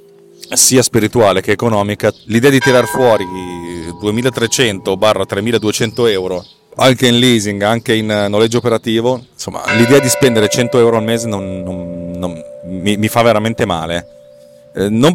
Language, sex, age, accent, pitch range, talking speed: Italian, male, 40-59, native, 95-115 Hz, 145 wpm